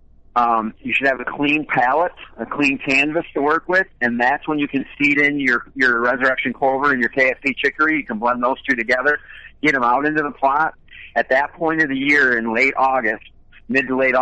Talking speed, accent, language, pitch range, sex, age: 220 wpm, American, English, 120-140 Hz, male, 50-69